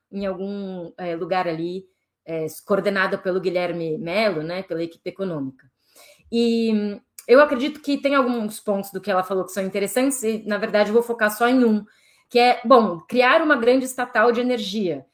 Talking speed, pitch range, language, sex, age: 175 wpm, 190-245 Hz, Portuguese, female, 20-39